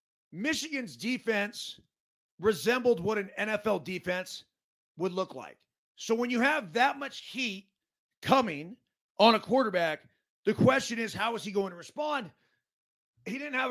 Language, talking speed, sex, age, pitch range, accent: English, 145 wpm, male, 30-49, 190-250 Hz, American